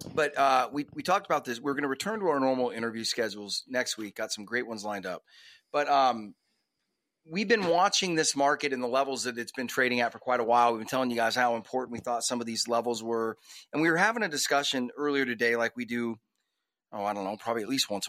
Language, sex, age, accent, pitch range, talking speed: English, male, 30-49, American, 115-150 Hz, 250 wpm